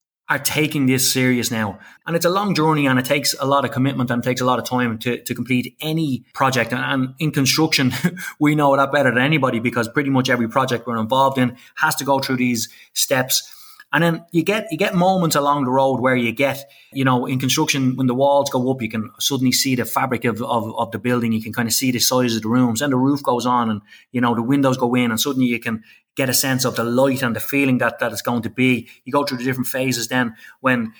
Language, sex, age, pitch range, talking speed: English, male, 20-39, 125-140 Hz, 260 wpm